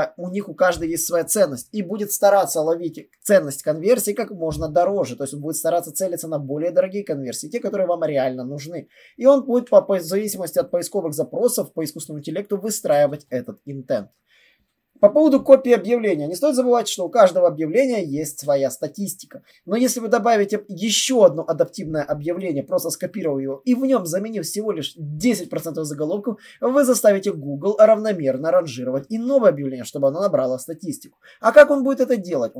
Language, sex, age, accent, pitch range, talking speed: Russian, male, 20-39, native, 155-230 Hz, 175 wpm